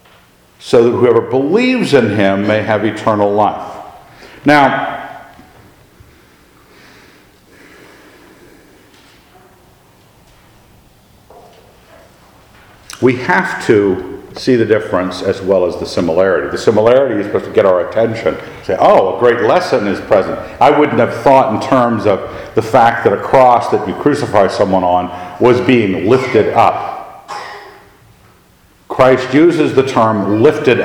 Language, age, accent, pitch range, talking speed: English, 50-69, American, 105-145 Hz, 125 wpm